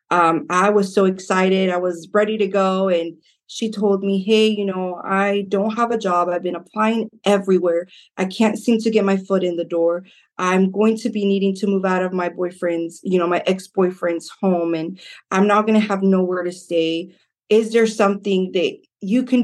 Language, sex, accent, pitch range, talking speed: English, female, American, 185-210 Hz, 205 wpm